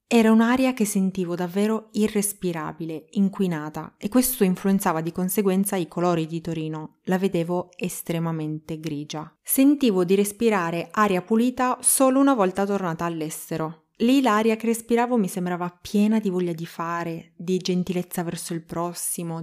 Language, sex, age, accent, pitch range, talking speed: Italian, female, 20-39, native, 165-215 Hz, 140 wpm